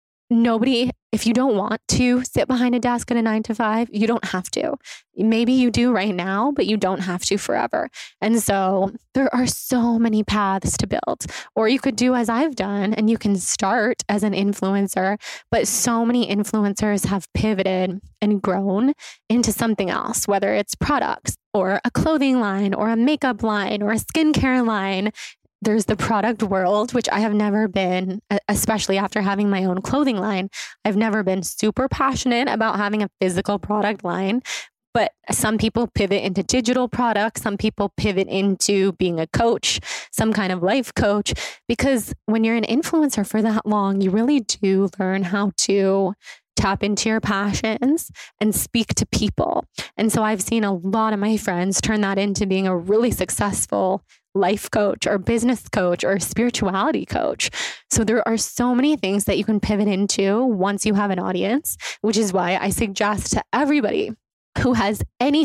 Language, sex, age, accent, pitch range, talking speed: English, female, 20-39, American, 195-235 Hz, 180 wpm